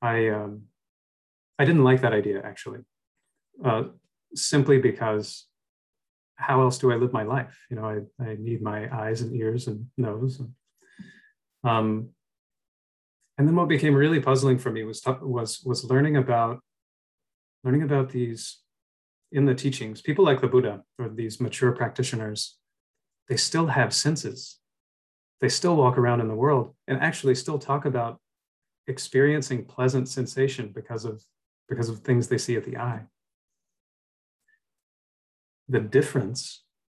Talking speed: 145 wpm